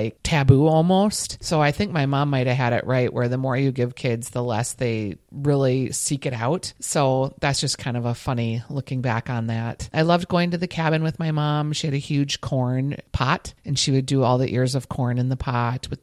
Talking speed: 240 wpm